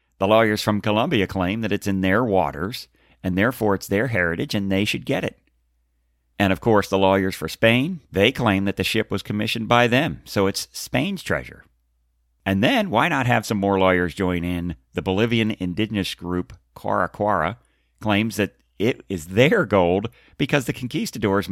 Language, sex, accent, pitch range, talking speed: English, male, American, 80-105 Hz, 180 wpm